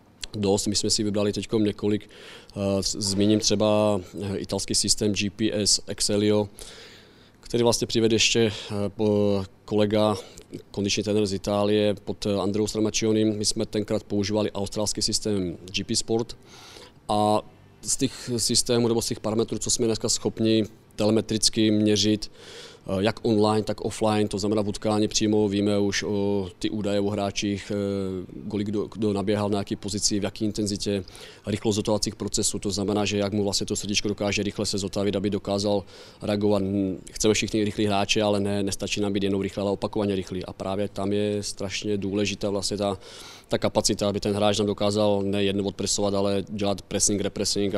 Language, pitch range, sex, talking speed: Czech, 100-105 Hz, male, 155 wpm